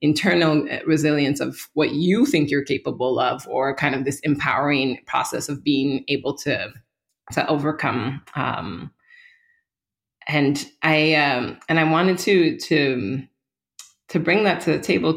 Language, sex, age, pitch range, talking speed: English, female, 20-39, 135-160 Hz, 140 wpm